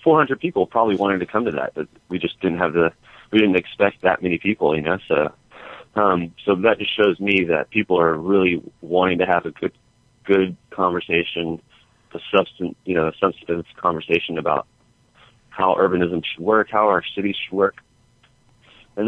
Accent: American